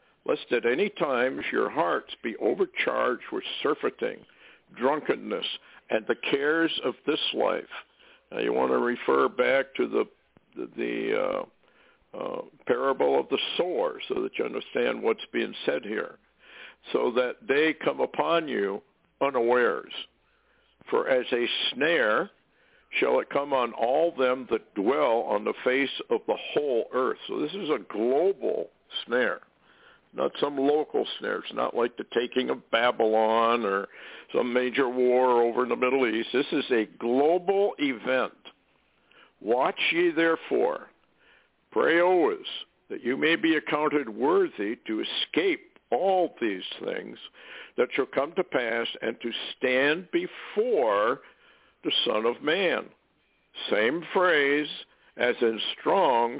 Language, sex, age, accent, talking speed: English, male, 60-79, American, 140 wpm